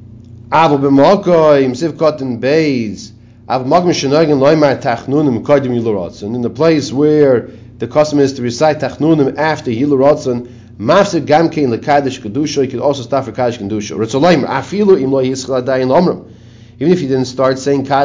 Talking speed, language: 70 wpm, English